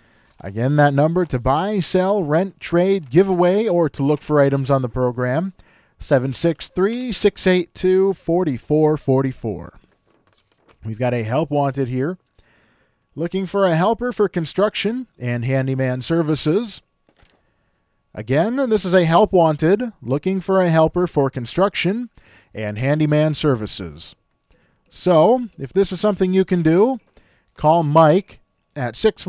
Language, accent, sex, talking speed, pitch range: English, American, male, 125 wpm, 130-190 Hz